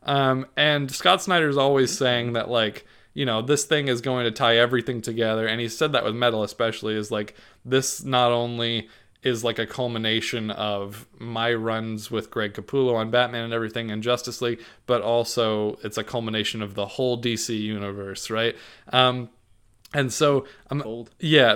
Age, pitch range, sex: 20-39, 110-135 Hz, male